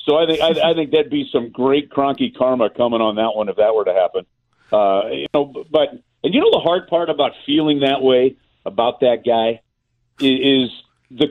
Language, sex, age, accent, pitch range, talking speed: English, male, 50-69, American, 125-180 Hz, 205 wpm